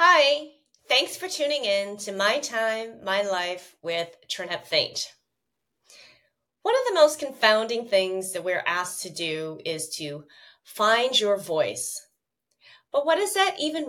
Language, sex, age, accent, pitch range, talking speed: English, female, 30-49, American, 180-255 Hz, 145 wpm